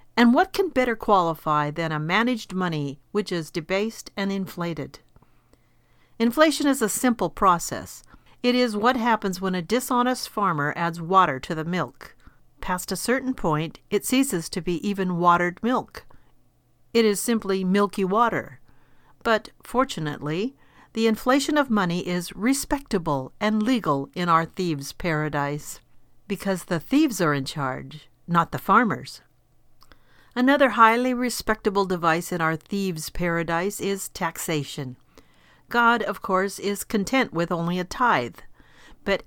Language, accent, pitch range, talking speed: English, American, 160-225 Hz, 140 wpm